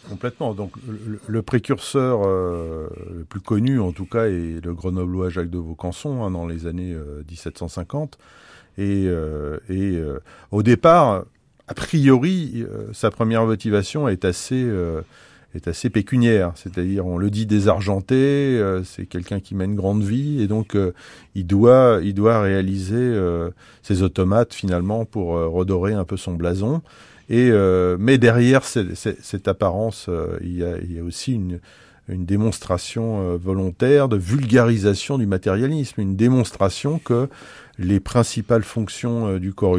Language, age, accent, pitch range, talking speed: French, 40-59, French, 90-115 Hz, 155 wpm